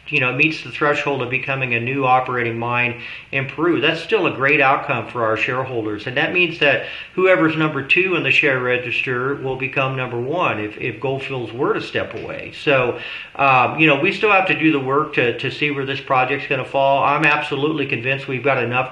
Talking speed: 220 wpm